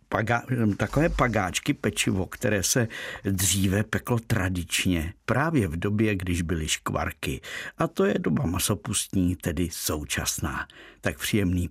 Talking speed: 120 wpm